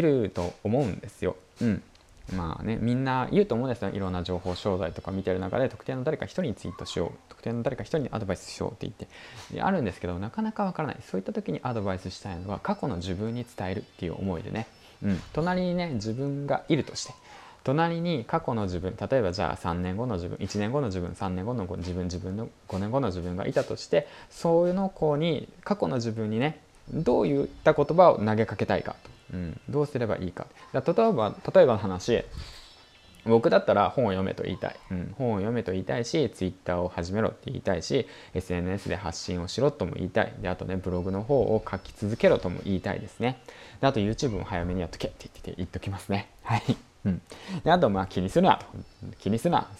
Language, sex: Japanese, male